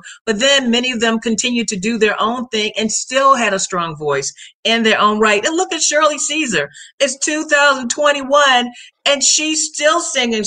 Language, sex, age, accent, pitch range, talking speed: English, female, 40-59, American, 210-260 Hz, 185 wpm